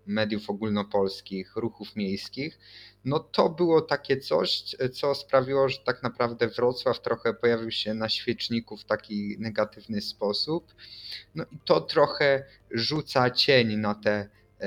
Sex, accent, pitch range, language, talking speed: male, native, 105-125 Hz, Polish, 130 wpm